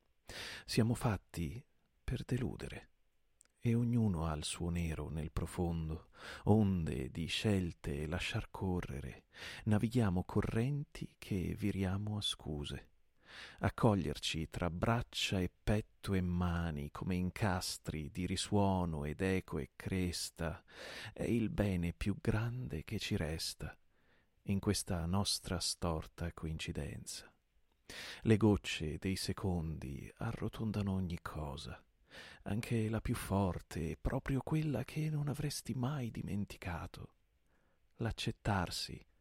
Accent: native